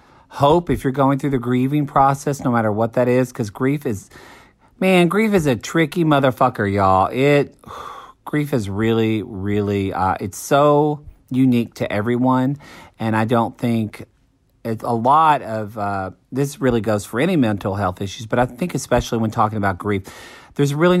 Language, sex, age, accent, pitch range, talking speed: English, male, 40-59, American, 100-130 Hz, 185 wpm